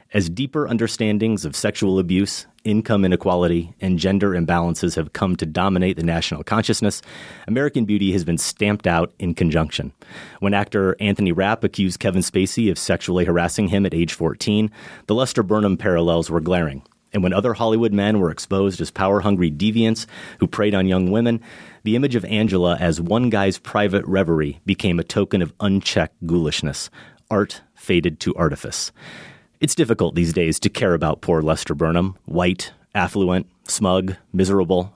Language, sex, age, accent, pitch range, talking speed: English, male, 30-49, American, 85-105 Hz, 160 wpm